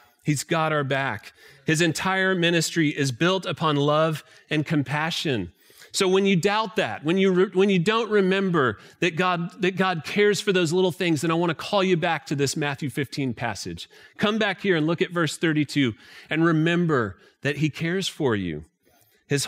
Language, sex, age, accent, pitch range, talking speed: English, male, 30-49, American, 150-195 Hz, 190 wpm